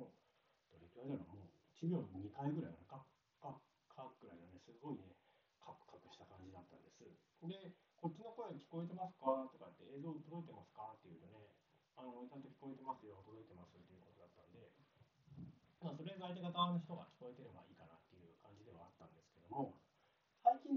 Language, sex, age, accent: Japanese, male, 40-59, native